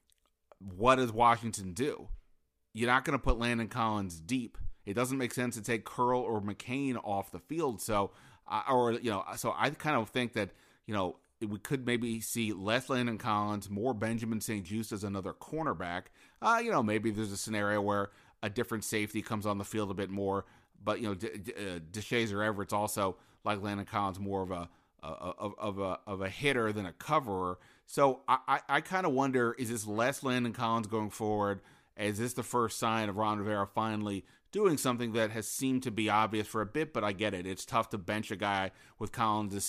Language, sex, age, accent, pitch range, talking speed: English, male, 30-49, American, 100-120 Hz, 210 wpm